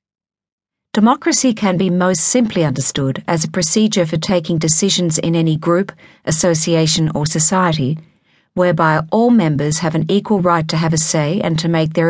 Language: English